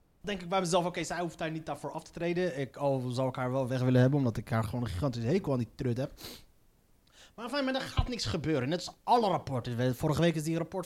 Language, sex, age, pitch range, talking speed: Dutch, male, 30-49, 135-230 Hz, 265 wpm